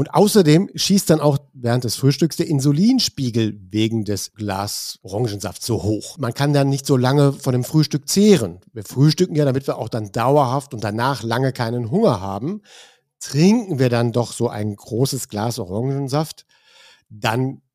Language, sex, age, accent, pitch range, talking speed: German, male, 50-69, German, 115-155 Hz, 170 wpm